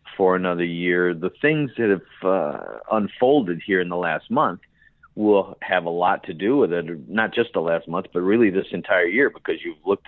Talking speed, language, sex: 210 wpm, English, male